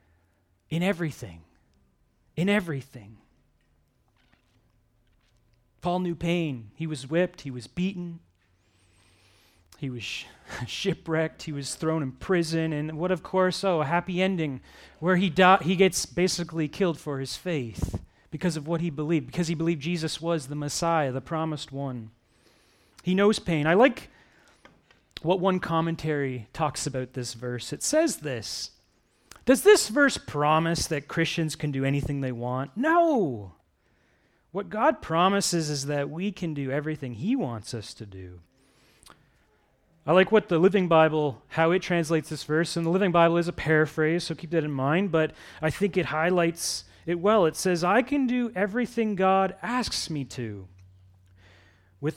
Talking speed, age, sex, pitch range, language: 155 wpm, 30-49, male, 115-175 Hz, English